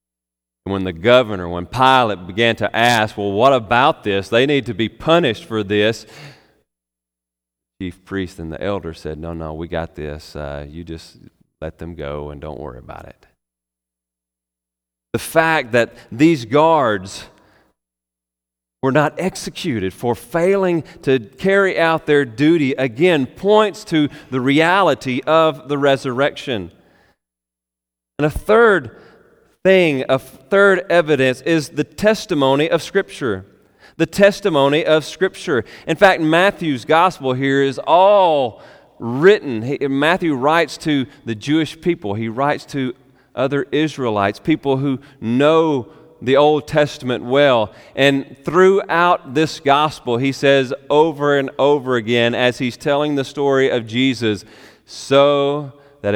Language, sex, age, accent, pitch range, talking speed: English, male, 40-59, American, 95-150 Hz, 135 wpm